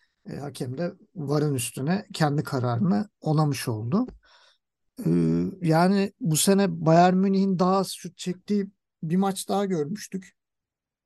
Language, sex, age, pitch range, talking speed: Turkish, male, 50-69, 135-185 Hz, 115 wpm